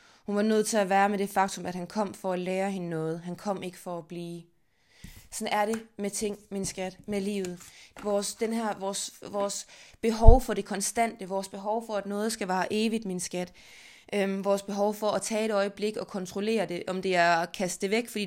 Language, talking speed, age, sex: Danish, 230 wpm, 20-39, female